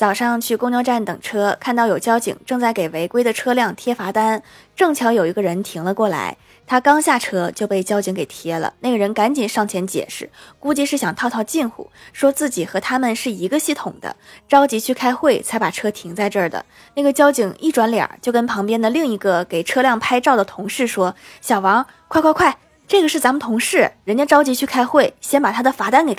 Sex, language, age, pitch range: female, Chinese, 20-39, 195-260 Hz